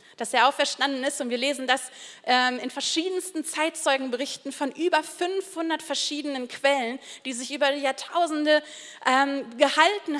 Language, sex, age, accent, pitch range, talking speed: German, female, 30-49, German, 275-340 Hz, 140 wpm